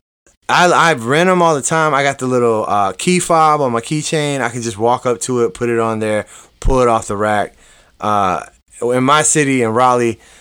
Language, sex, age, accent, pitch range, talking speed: English, male, 20-39, American, 110-145 Hz, 225 wpm